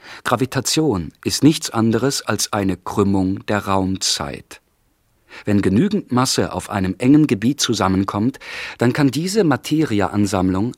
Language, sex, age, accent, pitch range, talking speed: German, male, 40-59, German, 105-140 Hz, 115 wpm